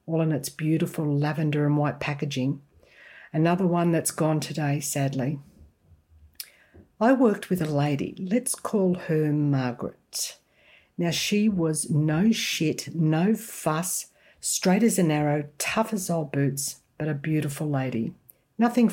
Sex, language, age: female, English, 60-79